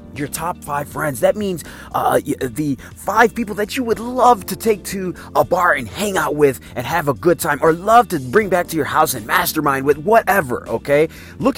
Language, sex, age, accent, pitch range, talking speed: English, male, 30-49, American, 145-220 Hz, 220 wpm